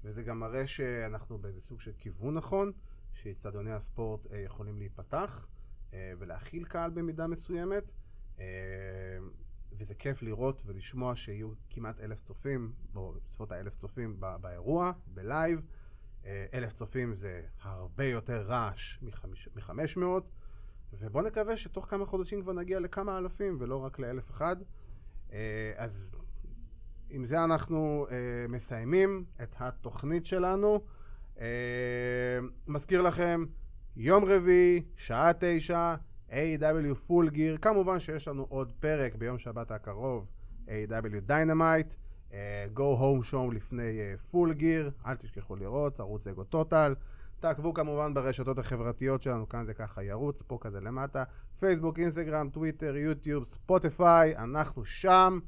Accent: native